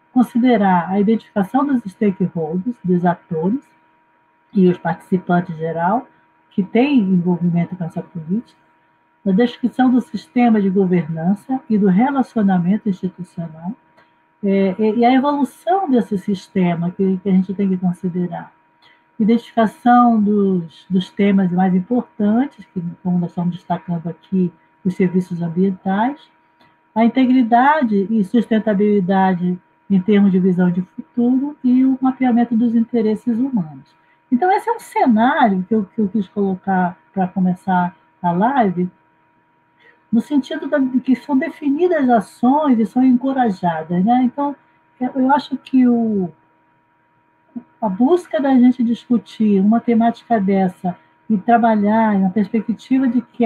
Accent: Brazilian